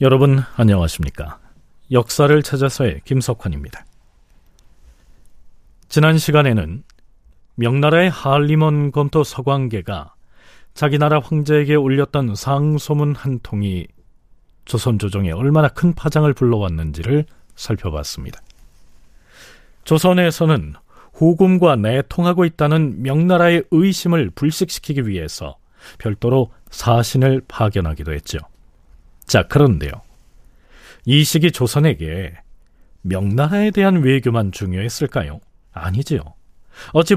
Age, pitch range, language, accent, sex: 40-59, 100-155 Hz, Korean, native, male